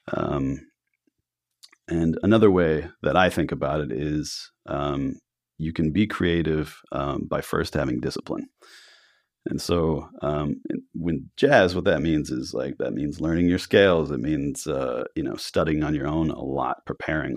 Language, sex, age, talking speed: English, male, 30-49, 160 wpm